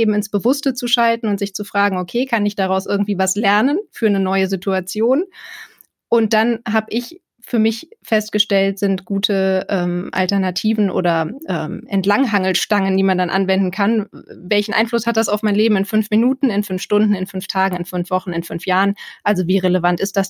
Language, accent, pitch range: German, German, 185-235 Hz